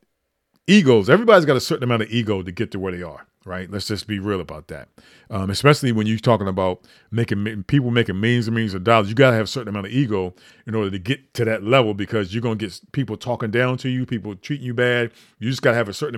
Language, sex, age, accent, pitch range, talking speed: English, male, 40-59, American, 105-145 Hz, 265 wpm